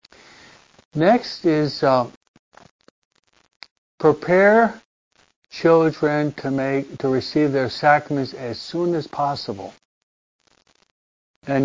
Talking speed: 80 wpm